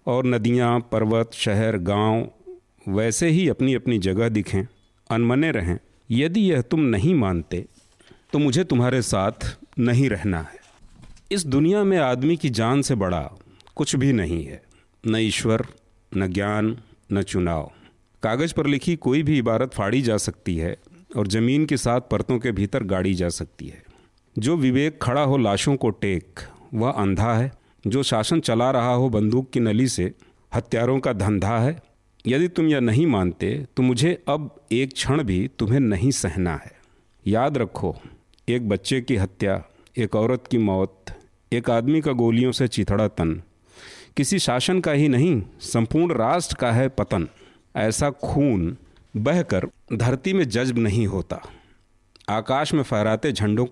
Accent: native